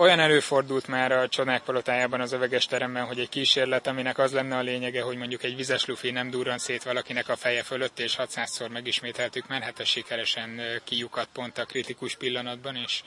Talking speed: 190 wpm